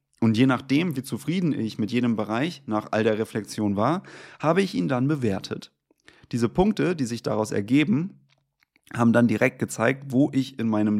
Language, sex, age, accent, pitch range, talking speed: German, male, 30-49, German, 105-135 Hz, 180 wpm